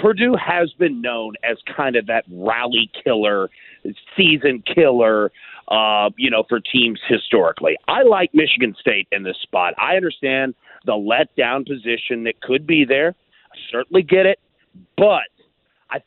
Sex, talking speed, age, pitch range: male, 150 wpm, 40-59, 120-185 Hz